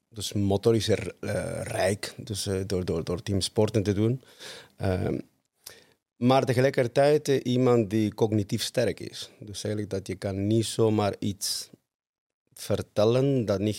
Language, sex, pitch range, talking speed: Dutch, male, 95-115 Hz, 150 wpm